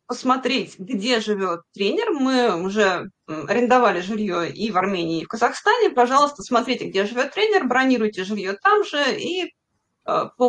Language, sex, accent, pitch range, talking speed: Russian, female, native, 215-290 Hz, 145 wpm